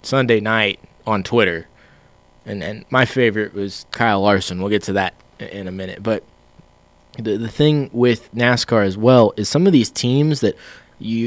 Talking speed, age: 175 wpm, 20-39